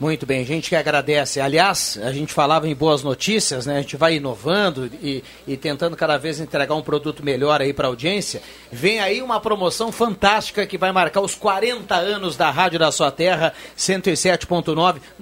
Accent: Brazilian